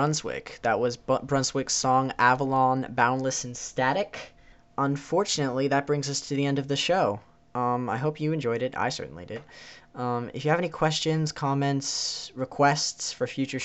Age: 10-29